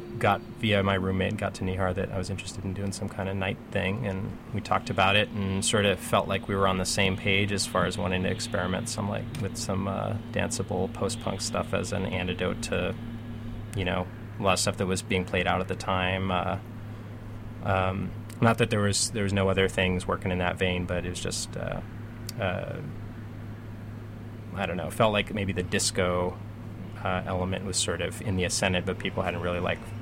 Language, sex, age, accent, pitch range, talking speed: English, male, 20-39, American, 95-115 Hz, 220 wpm